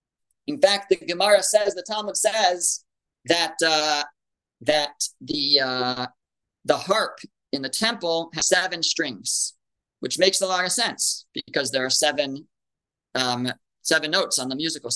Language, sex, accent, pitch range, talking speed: English, male, American, 160-215 Hz, 150 wpm